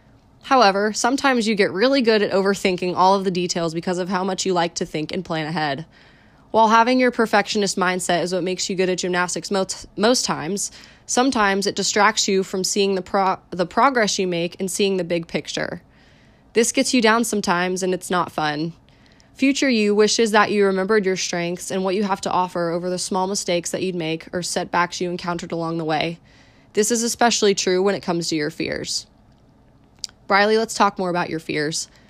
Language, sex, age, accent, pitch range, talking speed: English, female, 20-39, American, 175-215 Hz, 200 wpm